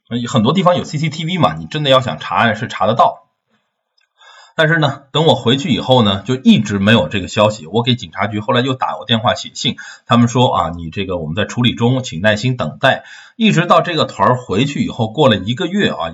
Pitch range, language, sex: 100-130 Hz, Chinese, male